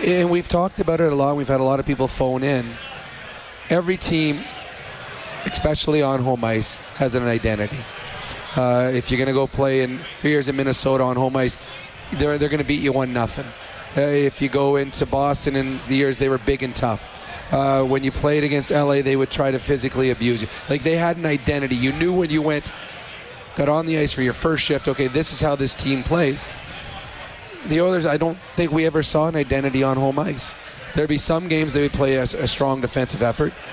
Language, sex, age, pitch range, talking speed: English, male, 30-49, 130-150 Hz, 220 wpm